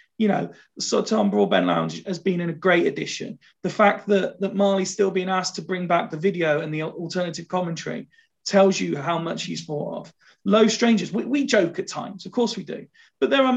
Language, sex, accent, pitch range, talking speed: English, male, British, 170-210 Hz, 215 wpm